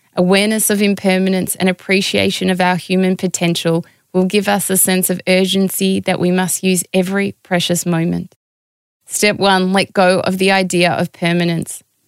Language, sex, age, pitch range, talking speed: English, female, 20-39, 180-195 Hz, 160 wpm